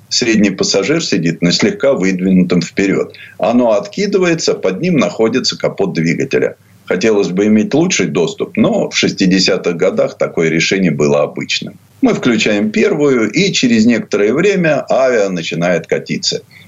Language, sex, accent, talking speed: Russian, male, native, 135 wpm